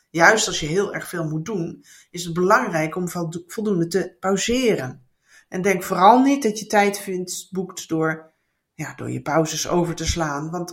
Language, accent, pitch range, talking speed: Dutch, Dutch, 165-215 Hz, 185 wpm